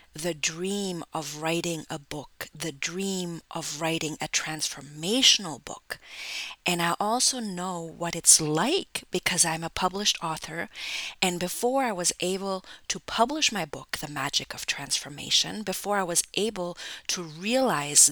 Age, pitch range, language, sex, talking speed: 30-49, 160-200 Hz, English, female, 145 wpm